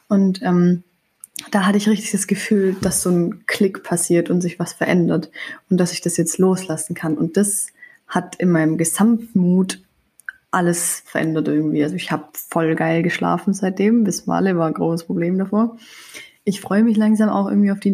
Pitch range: 175-210 Hz